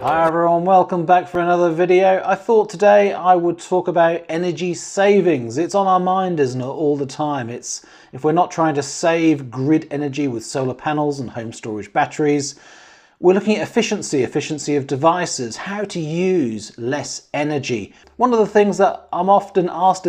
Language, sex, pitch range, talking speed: English, male, 135-190 Hz, 180 wpm